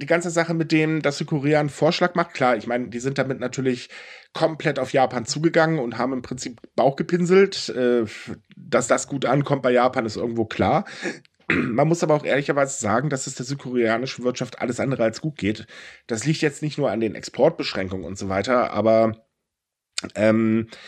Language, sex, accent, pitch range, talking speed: German, male, German, 120-150 Hz, 185 wpm